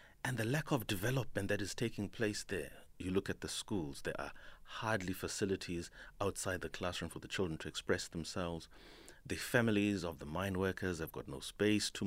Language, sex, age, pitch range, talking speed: English, male, 30-49, 90-115 Hz, 195 wpm